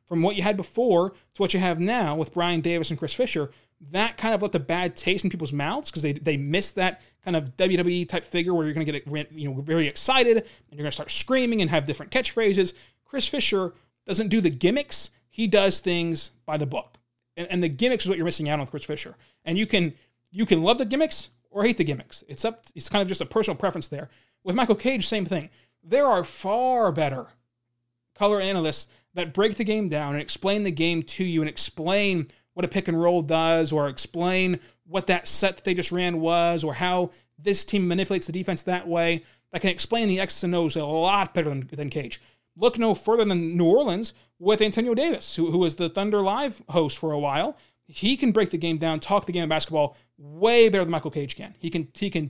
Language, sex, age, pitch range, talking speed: English, male, 30-49, 150-200 Hz, 230 wpm